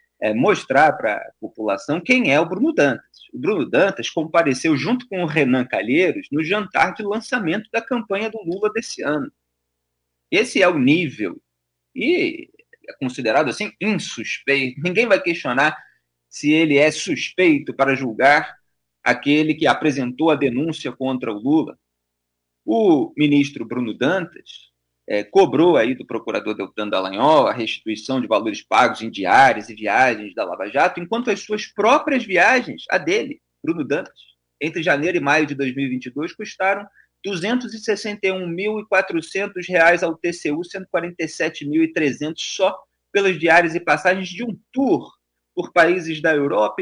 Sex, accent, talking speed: male, Brazilian, 140 wpm